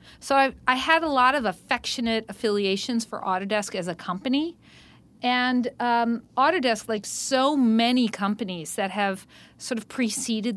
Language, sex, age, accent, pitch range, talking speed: English, female, 40-59, American, 190-230 Hz, 150 wpm